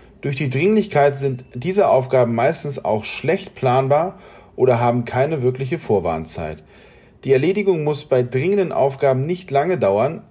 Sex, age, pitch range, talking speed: male, 40-59, 115-155 Hz, 140 wpm